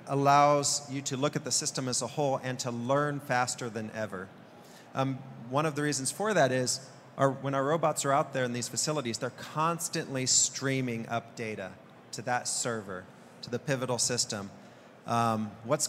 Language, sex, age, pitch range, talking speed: English, male, 40-59, 120-145 Hz, 180 wpm